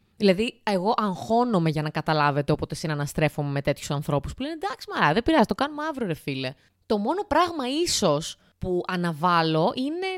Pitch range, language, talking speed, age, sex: 170-270 Hz, Greek, 165 wpm, 20-39, female